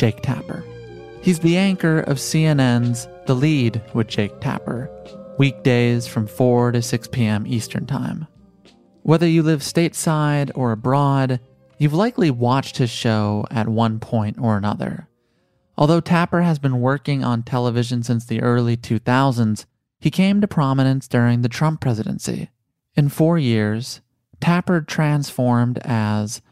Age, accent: 30-49, American